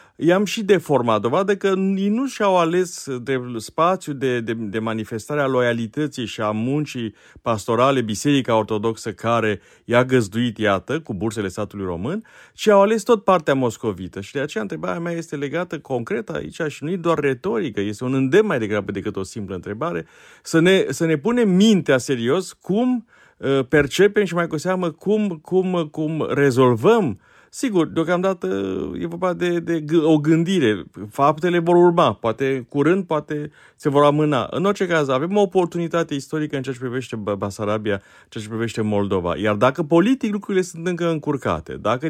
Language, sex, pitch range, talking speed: Romanian, male, 120-180 Hz, 170 wpm